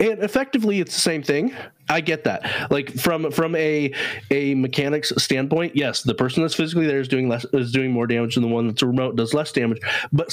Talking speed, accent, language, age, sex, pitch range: 225 wpm, American, English, 30-49, male, 125-165 Hz